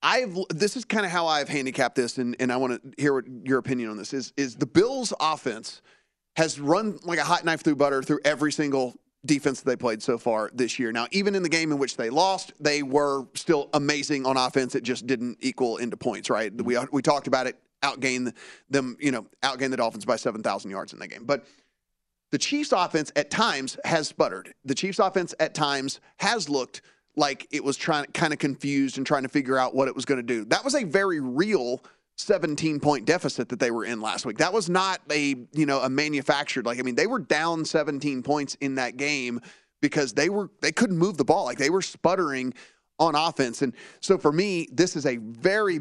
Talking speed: 230 wpm